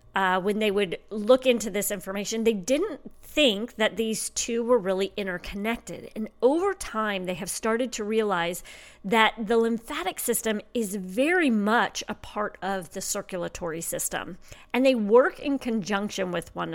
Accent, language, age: American, English, 40-59